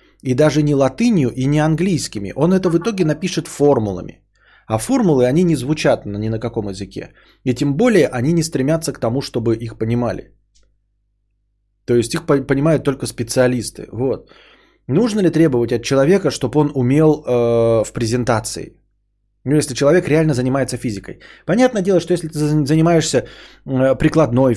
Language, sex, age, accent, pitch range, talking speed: Russian, male, 20-39, native, 115-150 Hz, 160 wpm